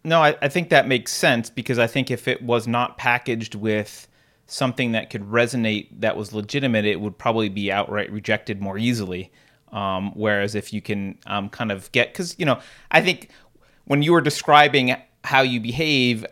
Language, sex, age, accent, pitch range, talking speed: English, male, 30-49, American, 110-140 Hz, 190 wpm